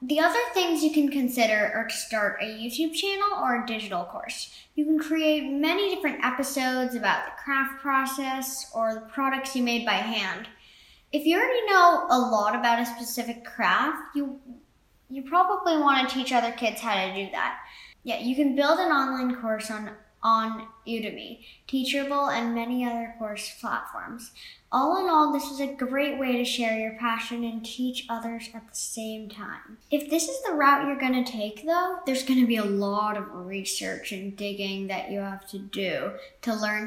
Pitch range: 220-280 Hz